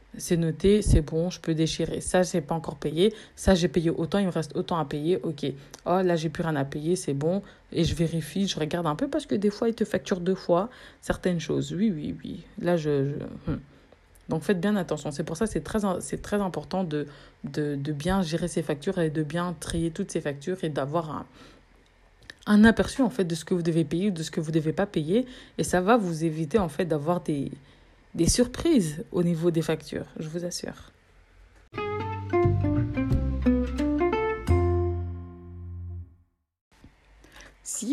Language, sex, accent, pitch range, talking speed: French, female, French, 155-185 Hz, 200 wpm